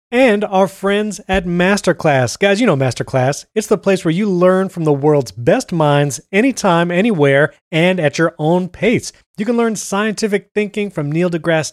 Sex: male